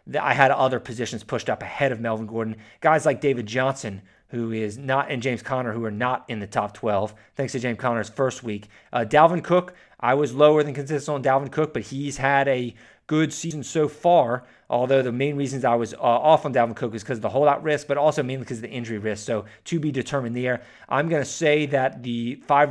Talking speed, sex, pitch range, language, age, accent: 235 wpm, male, 120-145 Hz, English, 30-49, American